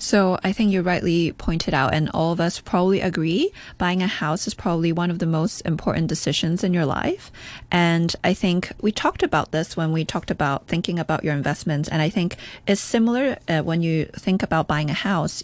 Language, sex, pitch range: English, female, 165-205 Hz